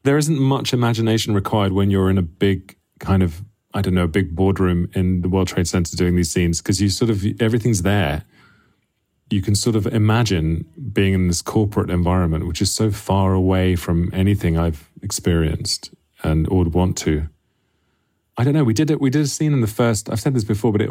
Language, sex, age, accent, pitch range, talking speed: English, male, 30-49, British, 90-115 Hz, 210 wpm